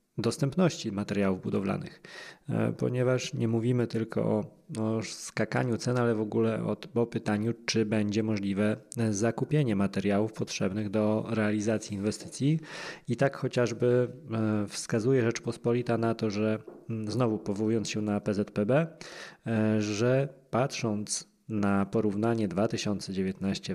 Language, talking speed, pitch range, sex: Polish, 110 wpm, 110-130 Hz, male